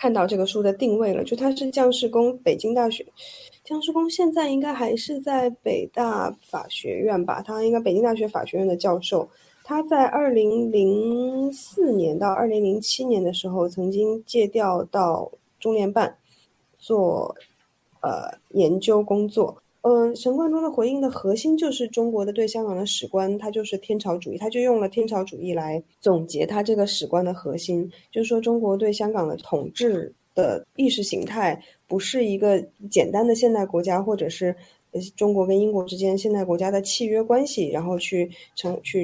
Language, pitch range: Chinese, 180-235 Hz